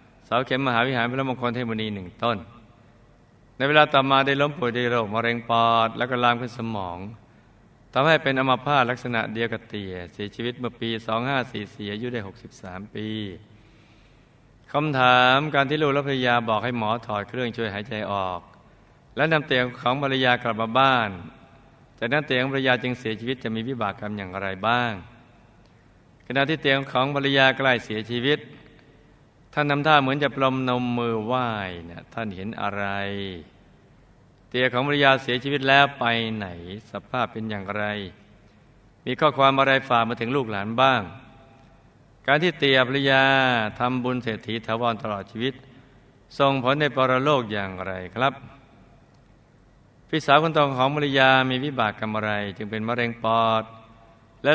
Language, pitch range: Thai, 110-135 Hz